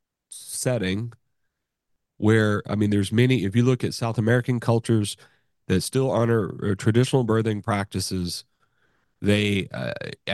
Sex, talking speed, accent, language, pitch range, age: male, 120 wpm, American, Dutch, 100-120 Hz, 30-49